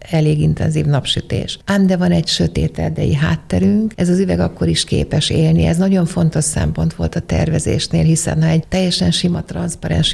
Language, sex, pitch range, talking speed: Hungarian, female, 155-185 Hz, 180 wpm